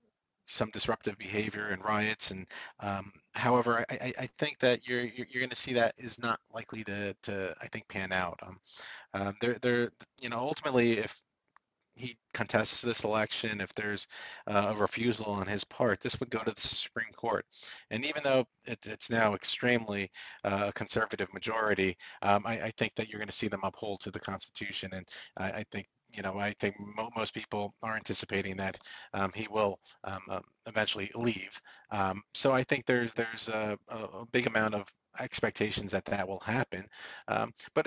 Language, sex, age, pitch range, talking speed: English, male, 40-59, 100-120 Hz, 185 wpm